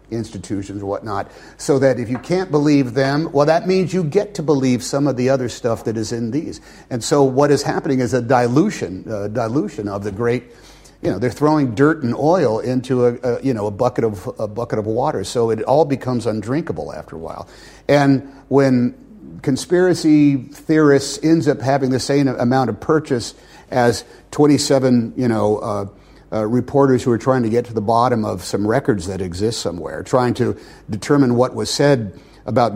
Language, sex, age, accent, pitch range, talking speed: English, male, 50-69, American, 105-135 Hz, 195 wpm